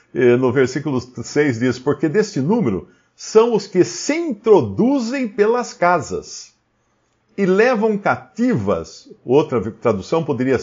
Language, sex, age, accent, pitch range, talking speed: Portuguese, male, 50-69, Brazilian, 130-210 Hz, 115 wpm